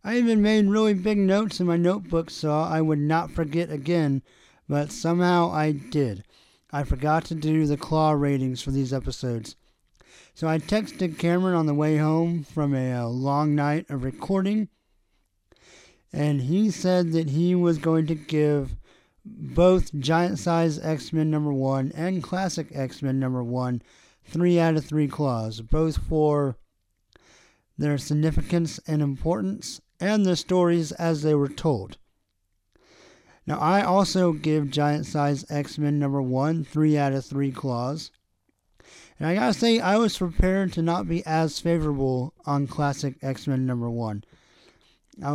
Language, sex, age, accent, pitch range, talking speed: English, male, 40-59, American, 135-170 Hz, 150 wpm